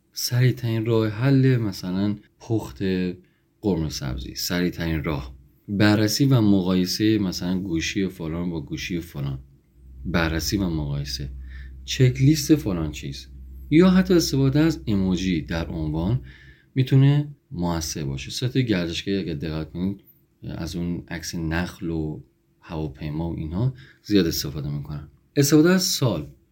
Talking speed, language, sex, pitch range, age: 125 wpm, Persian, male, 80-115 Hz, 30-49